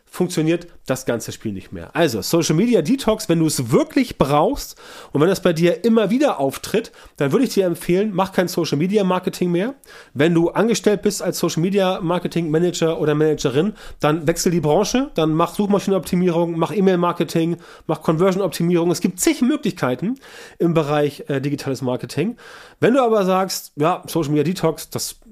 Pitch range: 155-200 Hz